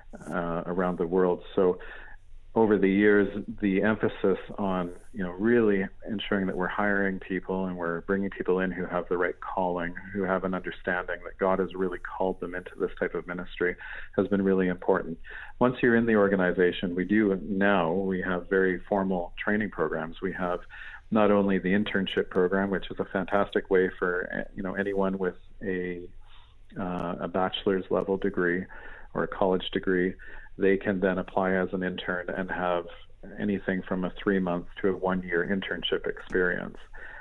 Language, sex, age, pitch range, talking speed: English, male, 40-59, 90-100 Hz, 175 wpm